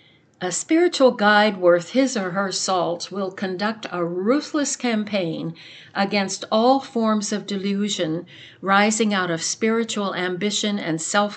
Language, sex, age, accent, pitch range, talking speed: English, female, 60-79, American, 170-220 Hz, 130 wpm